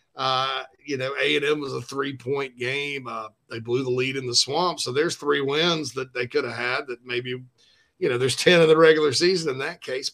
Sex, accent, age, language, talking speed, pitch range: male, American, 40-59, English, 225 wpm, 120-140 Hz